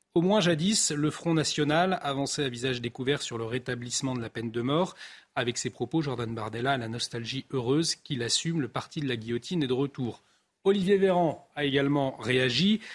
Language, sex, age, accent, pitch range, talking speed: French, male, 30-49, French, 120-150 Hz, 195 wpm